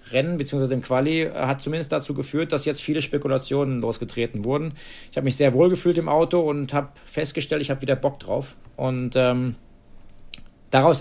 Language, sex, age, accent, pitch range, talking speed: German, male, 40-59, German, 130-150 Hz, 180 wpm